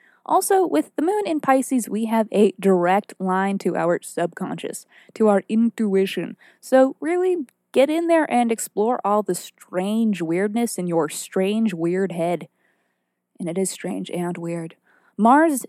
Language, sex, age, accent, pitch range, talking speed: English, female, 20-39, American, 180-235 Hz, 155 wpm